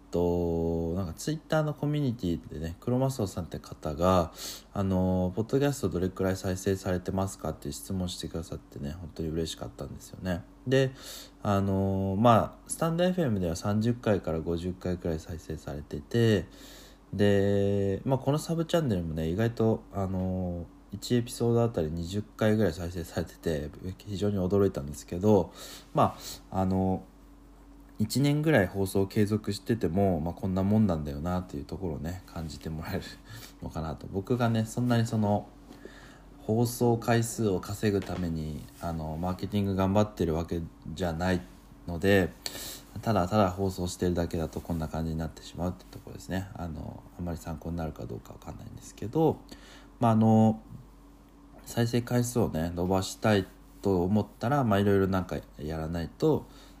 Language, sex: English, male